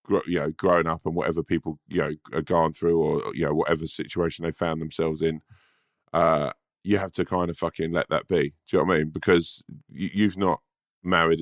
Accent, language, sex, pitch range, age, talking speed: British, English, male, 80-90 Hz, 20-39, 220 wpm